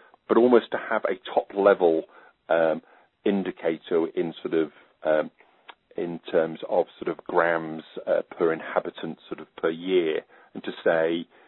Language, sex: English, male